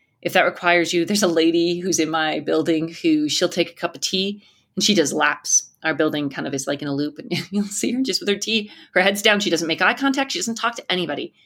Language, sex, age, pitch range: English, female, 30-49, 165-255 Hz